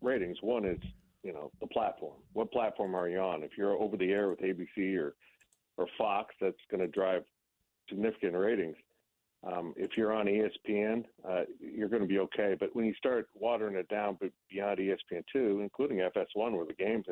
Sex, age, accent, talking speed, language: male, 50-69, American, 190 wpm, English